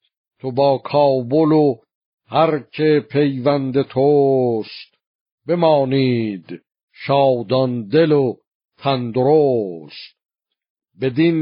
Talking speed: 75 wpm